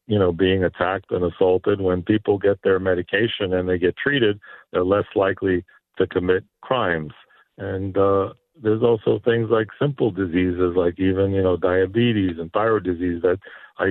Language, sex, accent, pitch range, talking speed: English, male, American, 95-105 Hz, 170 wpm